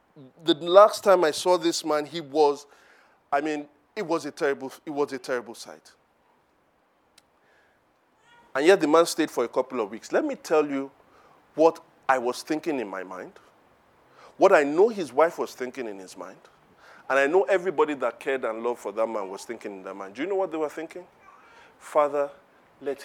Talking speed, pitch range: 200 wpm, 145-210 Hz